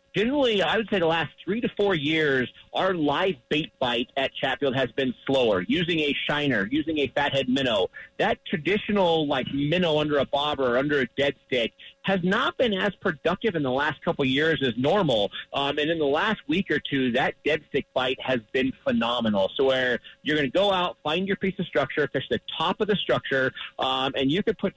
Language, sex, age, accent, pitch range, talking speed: English, male, 40-59, American, 130-170 Hz, 215 wpm